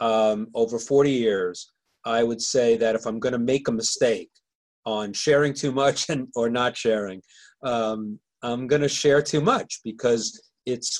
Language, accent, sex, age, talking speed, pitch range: English, American, male, 40-59, 165 wpm, 115-145 Hz